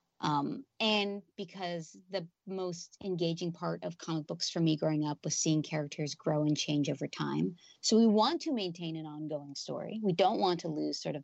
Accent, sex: American, female